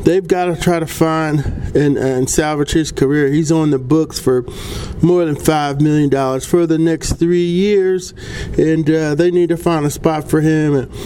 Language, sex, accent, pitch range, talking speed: English, male, American, 135-175 Hz, 195 wpm